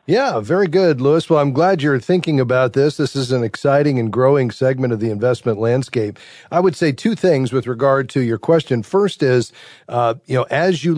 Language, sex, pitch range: English, male, 115-140 Hz